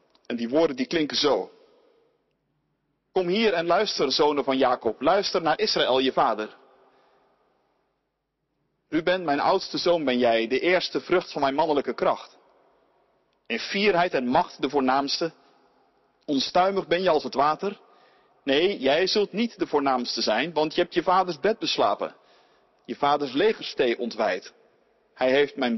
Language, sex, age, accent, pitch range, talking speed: Dutch, male, 50-69, Dutch, 145-215 Hz, 150 wpm